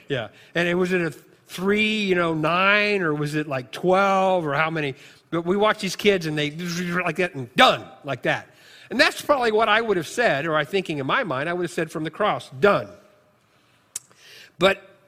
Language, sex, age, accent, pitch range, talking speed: English, male, 50-69, American, 150-195 Hz, 215 wpm